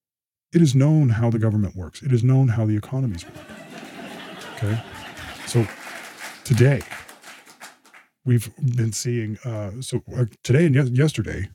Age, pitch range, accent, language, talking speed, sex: 50-69, 100-125 Hz, American, English, 130 wpm, male